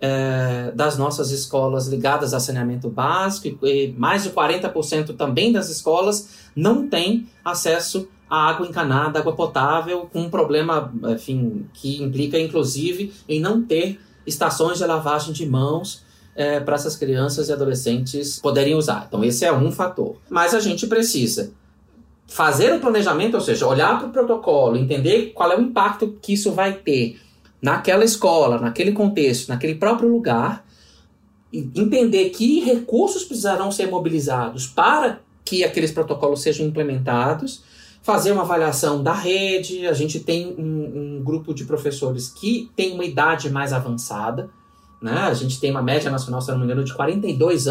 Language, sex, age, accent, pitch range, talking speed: Portuguese, male, 20-39, Brazilian, 135-190 Hz, 155 wpm